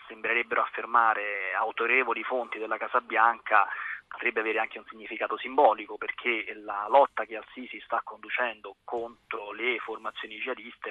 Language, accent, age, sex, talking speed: Italian, native, 30-49, male, 130 wpm